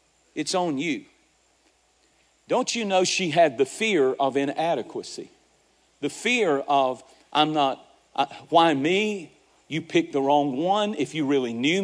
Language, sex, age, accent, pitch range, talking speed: English, male, 40-59, American, 140-185 Hz, 145 wpm